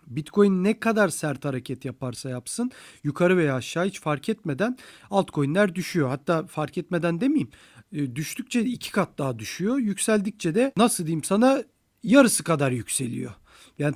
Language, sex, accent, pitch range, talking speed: Turkish, male, native, 145-190 Hz, 140 wpm